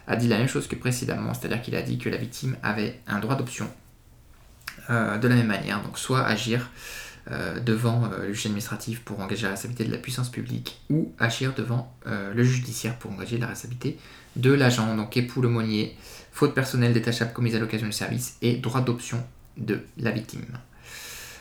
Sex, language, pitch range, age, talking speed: male, French, 110-125 Hz, 20-39, 195 wpm